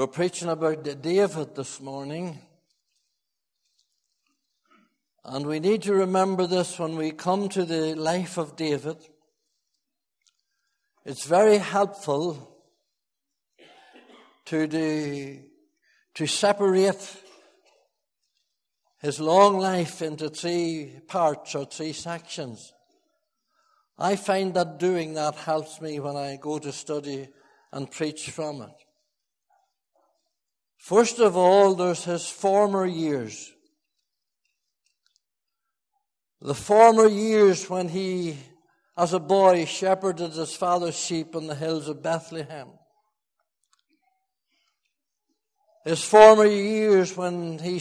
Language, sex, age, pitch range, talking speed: English, male, 60-79, 155-220 Hz, 100 wpm